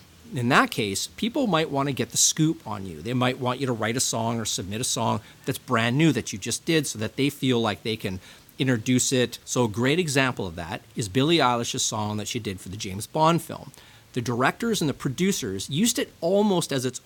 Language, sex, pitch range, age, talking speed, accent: English, male, 110-135 Hz, 40-59, 240 wpm, American